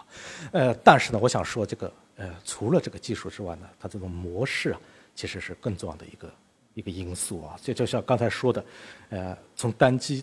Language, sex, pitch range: Chinese, male, 95-120 Hz